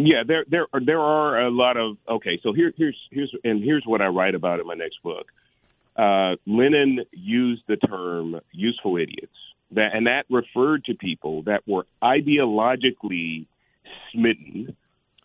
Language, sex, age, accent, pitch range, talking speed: English, male, 40-59, American, 100-130 Hz, 160 wpm